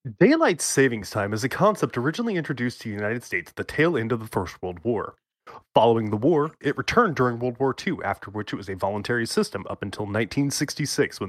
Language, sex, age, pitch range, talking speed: English, male, 20-39, 110-145 Hz, 220 wpm